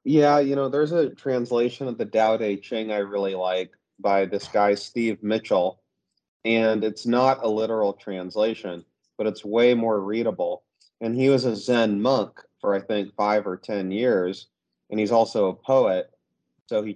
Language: English